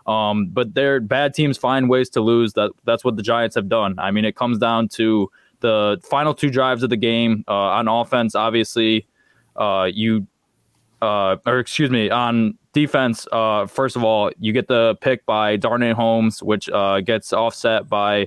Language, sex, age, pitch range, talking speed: English, male, 20-39, 105-120 Hz, 185 wpm